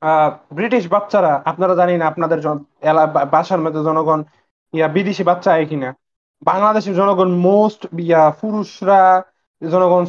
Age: 20-39